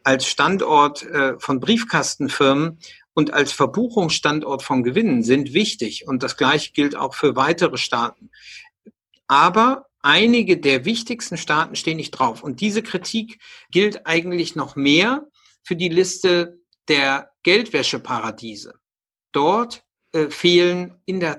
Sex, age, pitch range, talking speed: male, 50-69, 145-190 Hz, 125 wpm